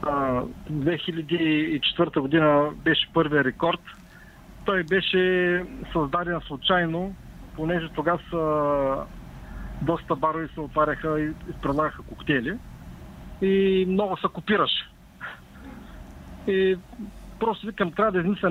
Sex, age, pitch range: male, 50-69, 155-195 Hz